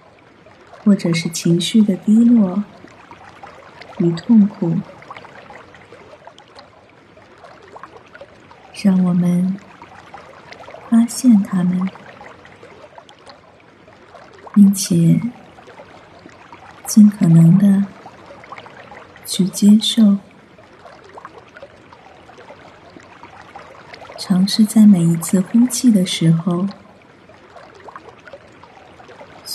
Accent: native